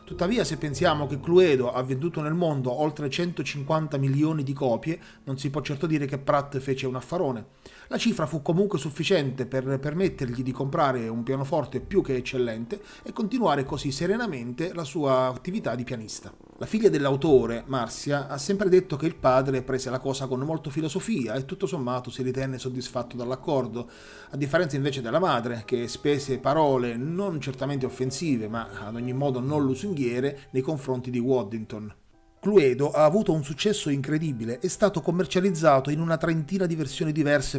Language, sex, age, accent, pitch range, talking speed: Italian, male, 30-49, native, 130-170 Hz, 170 wpm